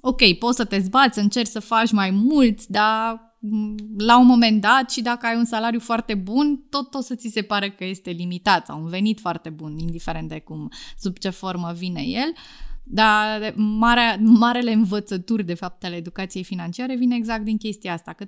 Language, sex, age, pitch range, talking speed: Romanian, female, 20-39, 190-245 Hz, 195 wpm